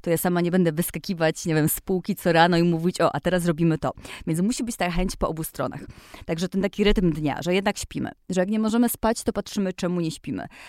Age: 20-39